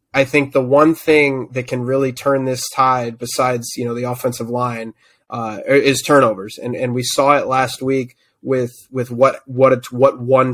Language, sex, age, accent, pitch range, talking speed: English, male, 20-39, American, 120-135 Hz, 195 wpm